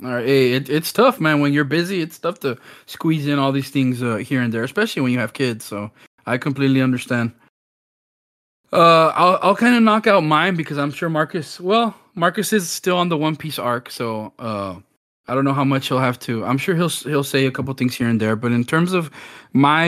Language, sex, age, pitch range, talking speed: English, male, 20-39, 125-155 Hz, 235 wpm